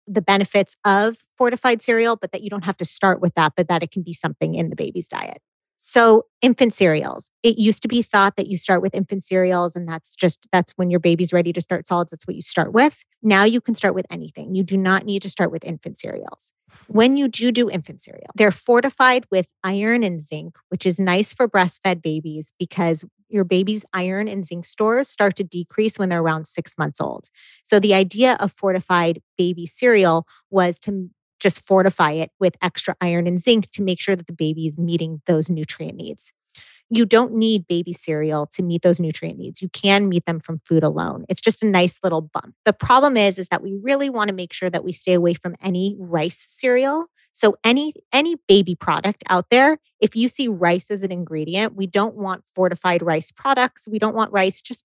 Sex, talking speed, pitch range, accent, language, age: female, 215 wpm, 175-215 Hz, American, English, 30-49